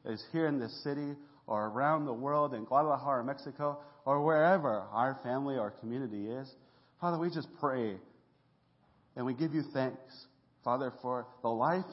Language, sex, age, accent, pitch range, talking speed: English, male, 40-59, American, 125-160 Hz, 160 wpm